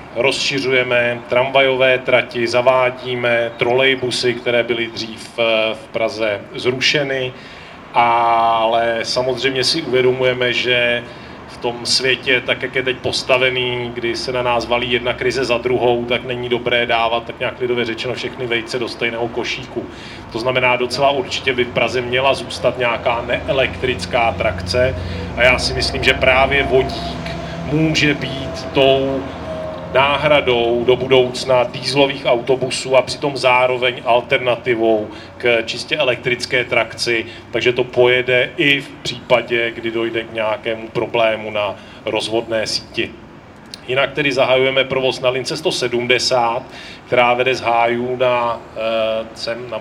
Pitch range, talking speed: 115-130 Hz, 130 wpm